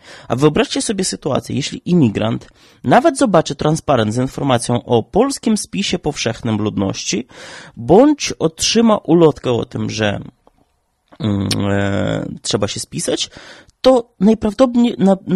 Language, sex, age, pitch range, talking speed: Polish, male, 30-49, 130-205 Hz, 105 wpm